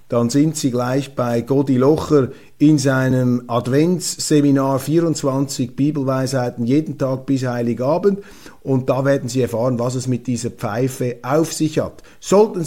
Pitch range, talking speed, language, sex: 120-150 Hz, 140 wpm, German, male